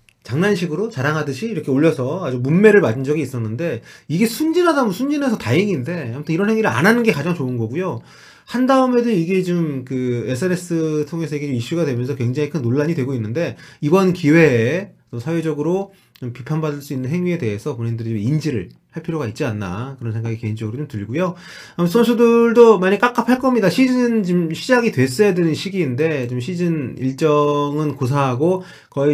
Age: 30-49